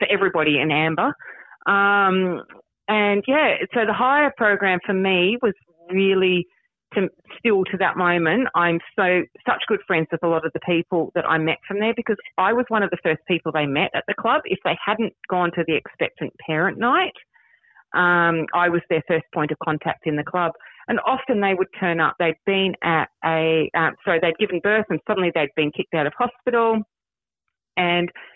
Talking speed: 195 wpm